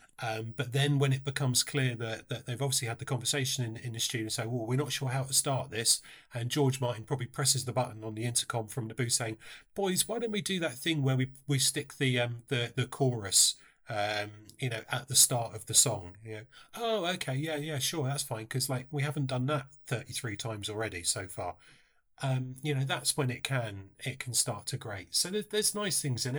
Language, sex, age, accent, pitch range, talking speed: English, male, 30-49, British, 115-145 Hz, 240 wpm